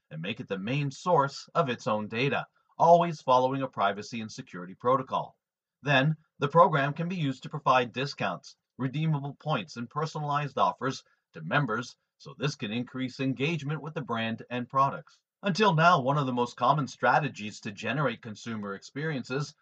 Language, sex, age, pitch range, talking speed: English, male, 40-59, 120-155 Hz, 170 wpm